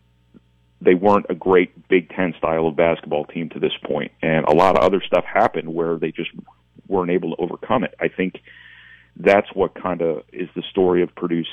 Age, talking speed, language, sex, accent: 40-59, 205 wpm, English, male, American